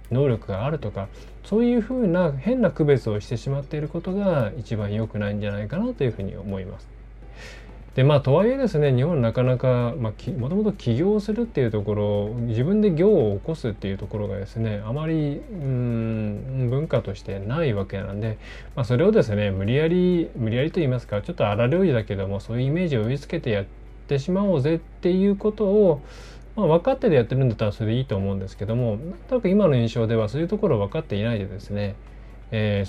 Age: 20-39